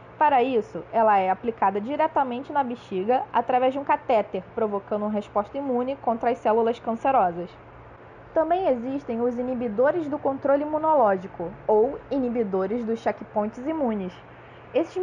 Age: 20-39